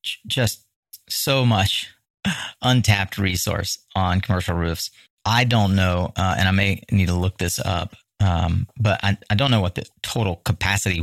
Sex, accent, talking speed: male, American, 165 wpm